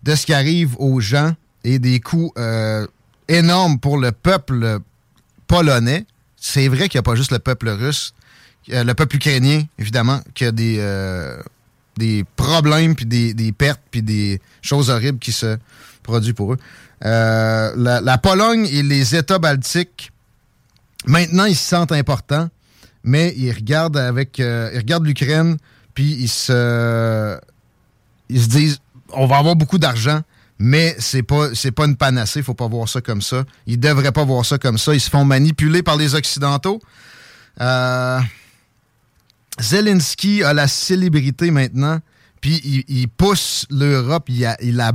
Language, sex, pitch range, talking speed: French, male, 120-150 Hz, 170 wpm